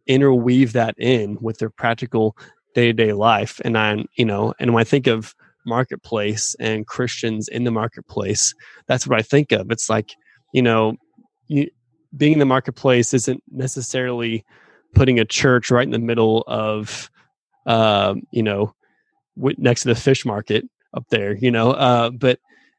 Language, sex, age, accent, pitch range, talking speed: English, male, 20-39, American, 115-130 Hz, 160 wpm